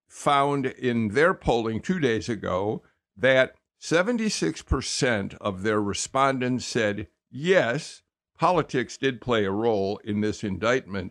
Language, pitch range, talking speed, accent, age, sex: English, 110-155 Hz, 120 wpm, American, 60-79, male